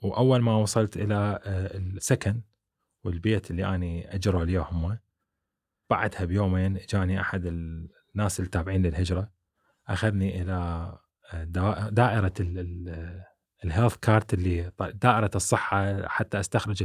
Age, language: 20-39, Arabic